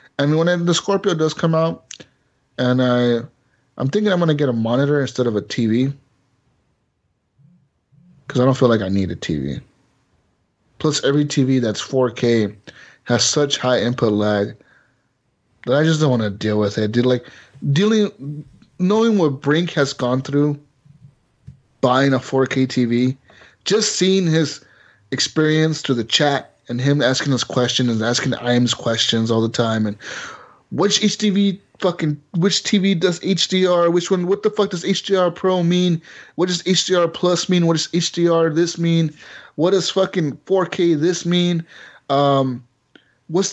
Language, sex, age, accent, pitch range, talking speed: English, male, 30-49, American, 120-170 Hz, 160 wpm